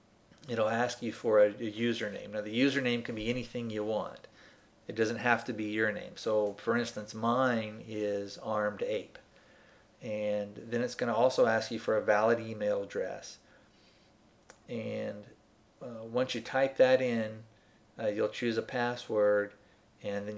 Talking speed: 165 wpm